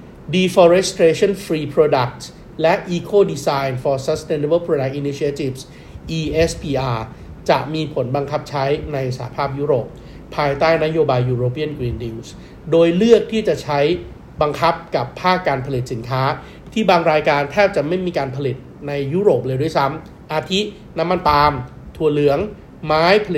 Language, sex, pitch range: Thai, male, 130-165 Hz